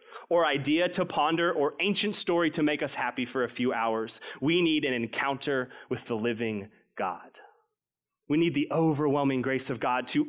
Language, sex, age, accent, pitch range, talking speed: English, male, 30-49, American, 135-175 Hz, 180 wpm